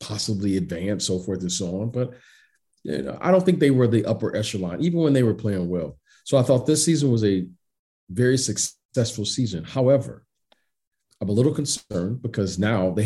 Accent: American